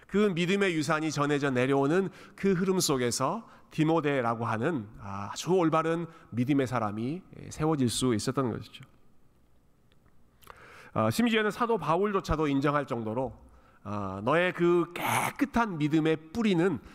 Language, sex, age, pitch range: Korean, male, 40-59, 120-185 Hz